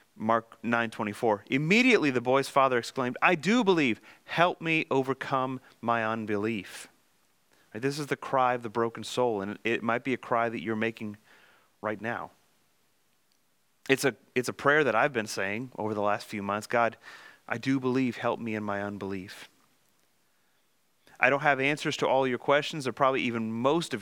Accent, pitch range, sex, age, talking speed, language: American, 110-135 Hz, male, 30-49, 175 wpm, English